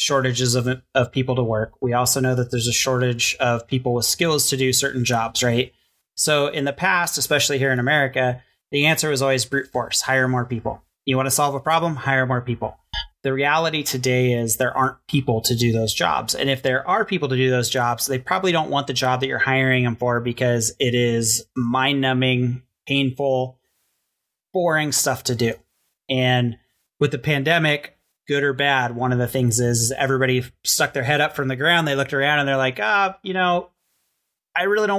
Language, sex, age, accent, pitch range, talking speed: English, male, 30-49, American, 125-145 Hz, 210 wpm